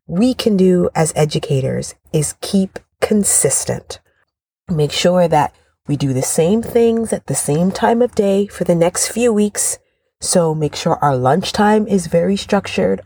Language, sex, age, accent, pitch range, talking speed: English, female, 30-49, American, 170-225 Hz, 165 wpm